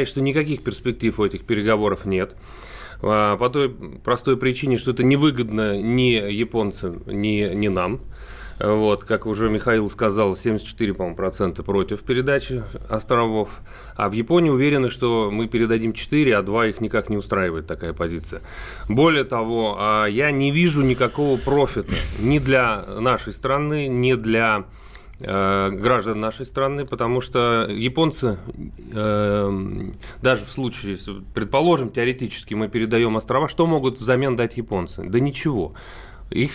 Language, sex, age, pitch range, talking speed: Russian, male, 30-49, 105-135 Hz, 135 wpm